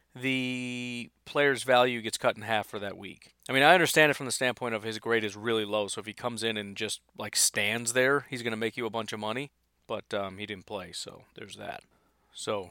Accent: American